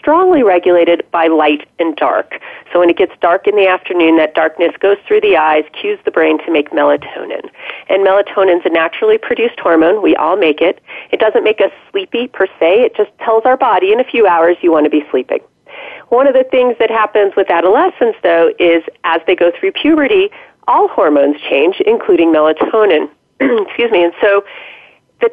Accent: American